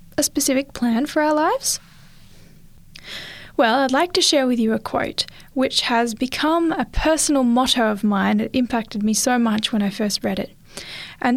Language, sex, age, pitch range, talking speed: English, female, 10-29, 220-290 Hz, 185 wpm